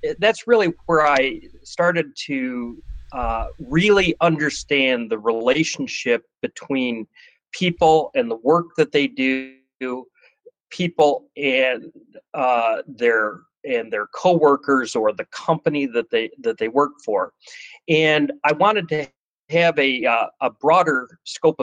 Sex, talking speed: male, 125 wpm